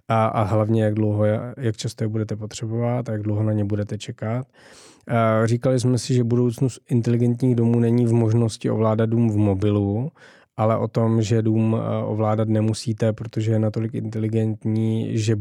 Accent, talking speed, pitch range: native, 165 wpm, 110-120 Hz